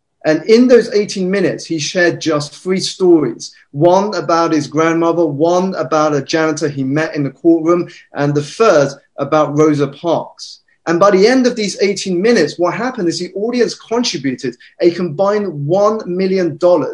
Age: 20-39